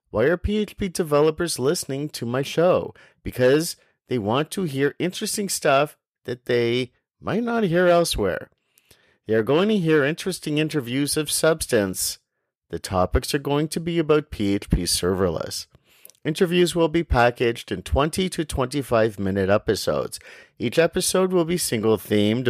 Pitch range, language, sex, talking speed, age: 110-160 Hz, English, male, 145 wpm, 40-59